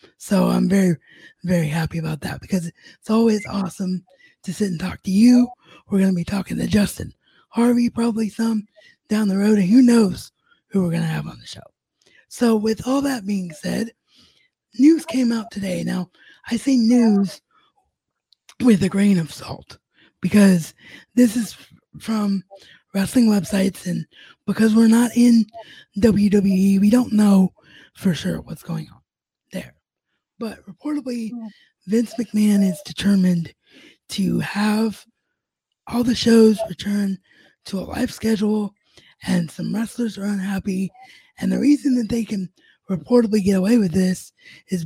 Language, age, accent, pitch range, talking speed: English, 20-39, American, 190-235 Hz, 150 wpm